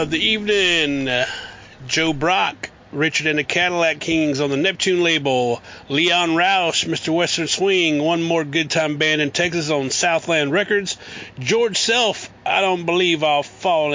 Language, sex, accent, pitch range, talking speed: English, male, American, 150-185 Hz, 160 wpm